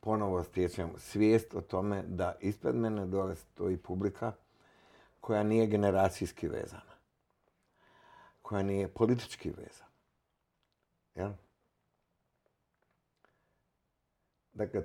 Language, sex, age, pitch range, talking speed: Croatian, male, 60-79, 90-110 Hz, 85 wpm